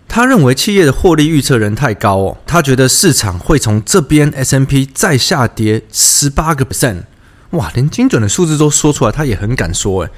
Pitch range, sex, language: 110-165 Hz, male, Chinese